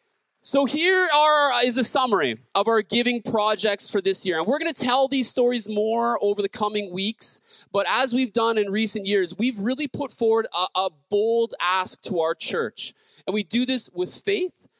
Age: 30-49